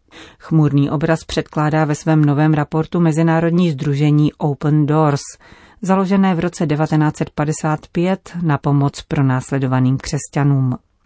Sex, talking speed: female, 105 wpm